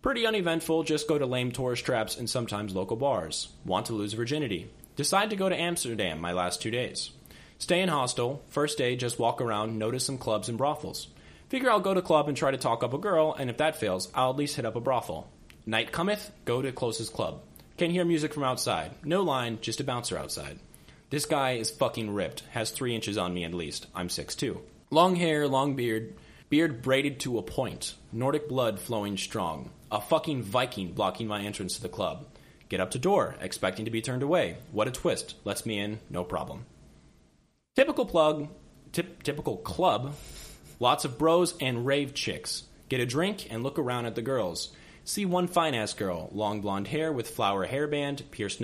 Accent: American